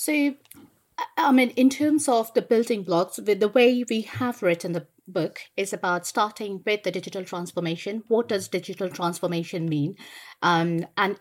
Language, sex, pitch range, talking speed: English, female, 170-210 Hz, 165 wpm